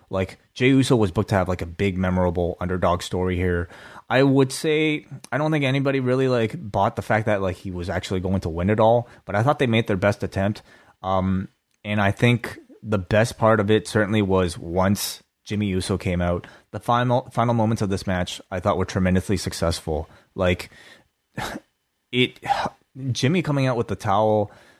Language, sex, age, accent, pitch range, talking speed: English, male, 20-39, American, 95-115 Hz, 195 wpm